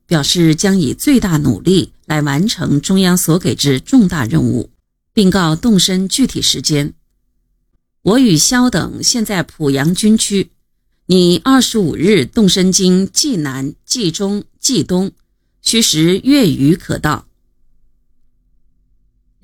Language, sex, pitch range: Chinese, female, 150-210 Hz